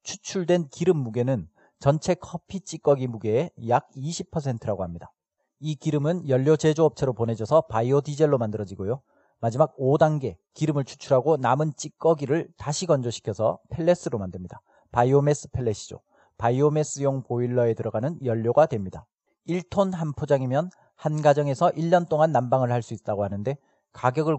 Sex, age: male, 40-59